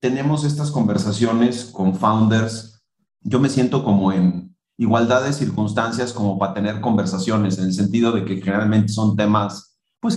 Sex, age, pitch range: male, 40-59, 105-145 Hz